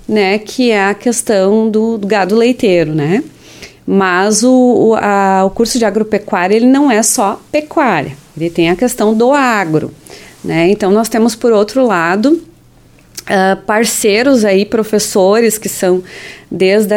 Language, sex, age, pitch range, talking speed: Portuguese, female, 30-49, 185-230 Hz, 140 wpm